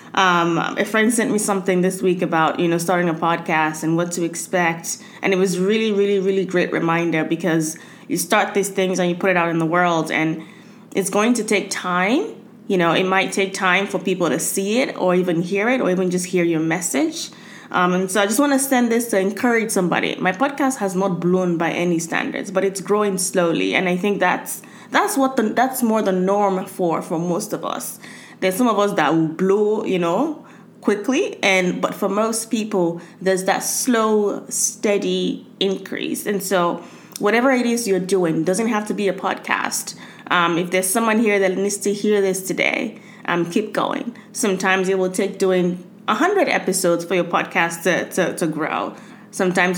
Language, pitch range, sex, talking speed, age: English, 175-215 Hz, female, 200 wpm, 20-39